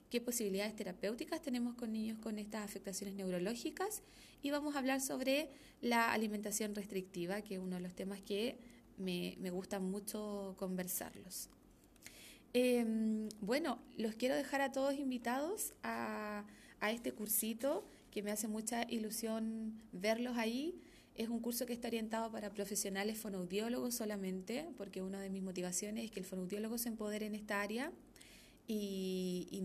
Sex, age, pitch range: female, 20-39, 195-245 Hz